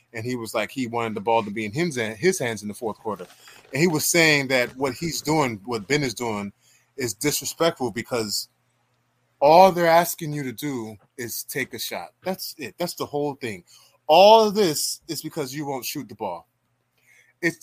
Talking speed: 200 wpm